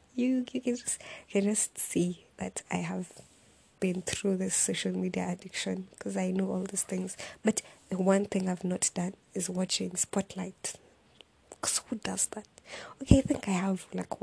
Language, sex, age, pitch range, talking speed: English, female, 20-39, 185-205 Hz, 180 wpm